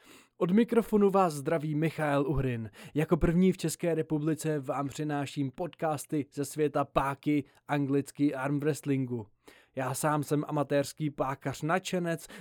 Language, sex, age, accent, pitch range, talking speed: Czech, male, 20-39, native, 140-170 Hz, 125 wpm